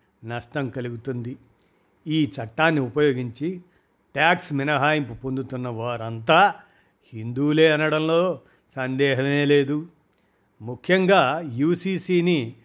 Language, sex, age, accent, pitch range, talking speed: Telugu, male, 50-69, native, 130-160 Hz, 70 wpm